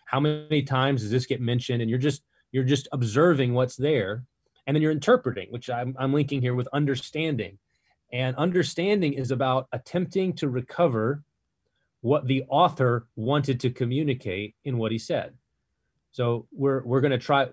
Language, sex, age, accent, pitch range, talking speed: English, male, 30-49, American, 120-150 Hz, 165 wpm